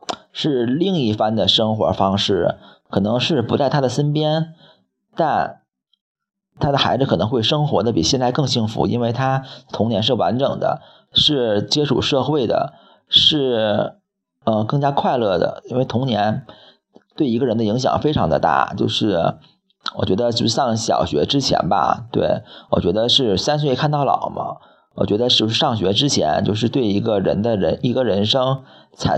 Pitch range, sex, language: 105-140 Hz, male, Chinese